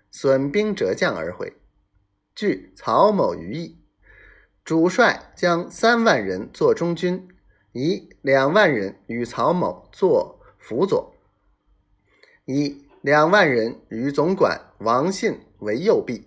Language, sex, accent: Chinese, male, native